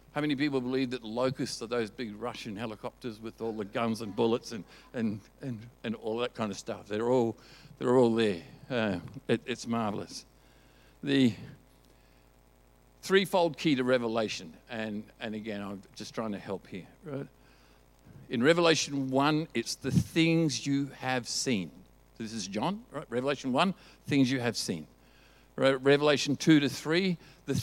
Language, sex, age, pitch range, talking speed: English, male, 50-69, 100-140 Hz, 165 wpm